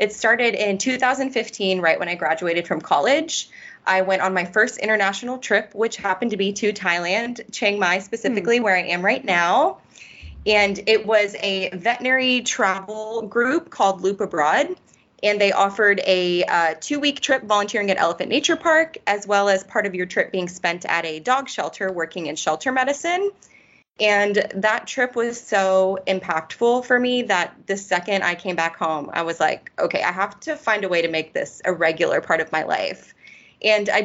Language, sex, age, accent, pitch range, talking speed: English, female, 20-39, American, 180-240 Hz, 185 wpm